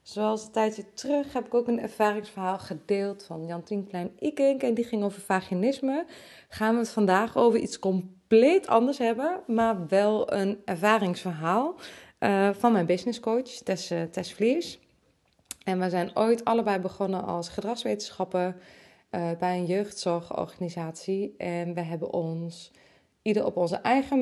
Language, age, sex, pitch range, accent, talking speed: Dutch, 20-39, female, 185-230 Hz, Dutch, 150 wpm